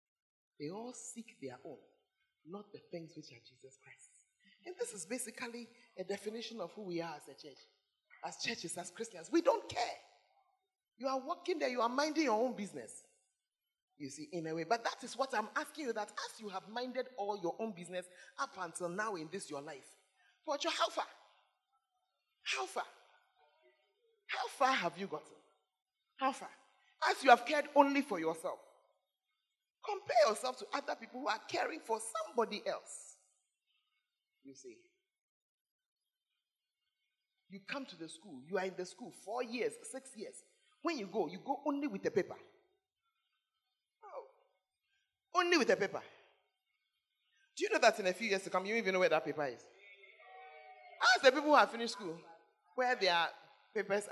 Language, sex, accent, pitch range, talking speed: English, male, Nigerian, 195-320 Hz, 175 wpm